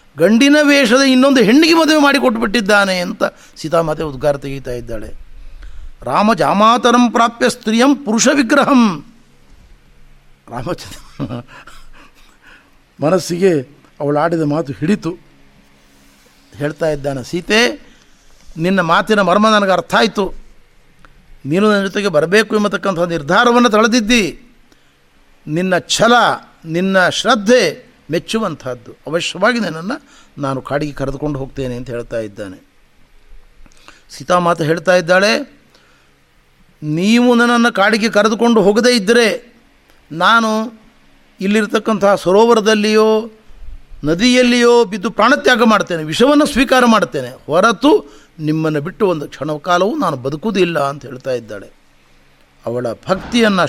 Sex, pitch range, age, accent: male, 145-230 Hz, 60-79, native